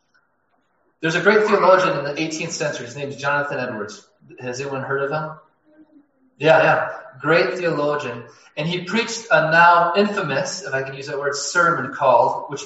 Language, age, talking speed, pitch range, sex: English, 20-39, 175 wpm, 135-180 Hz, male